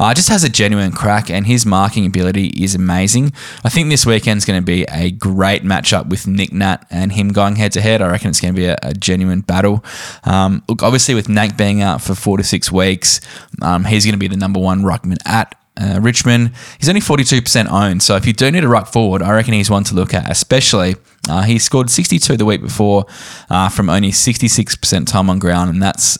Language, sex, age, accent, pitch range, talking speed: English, male, 10-29, Australian, 95-115 Hz, 225 wpm